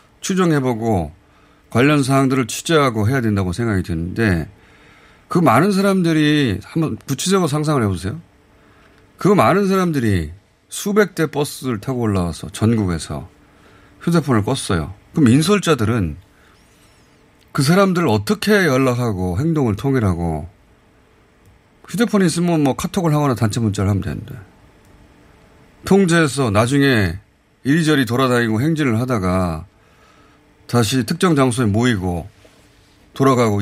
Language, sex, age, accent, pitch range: Korean, male, 30-49, native, 100-150 Hz